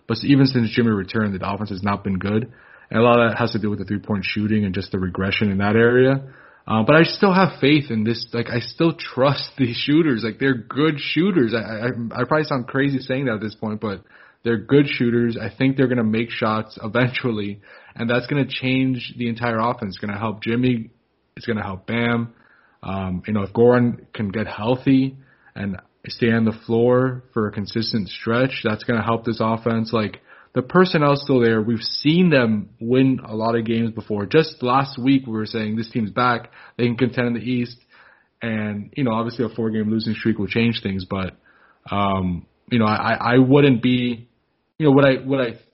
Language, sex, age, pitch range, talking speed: English, male, 20-39, 110-130 Hz, 220 wpm